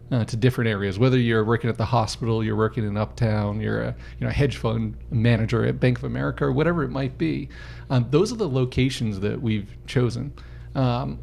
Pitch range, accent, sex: 105-130 Hz, American, male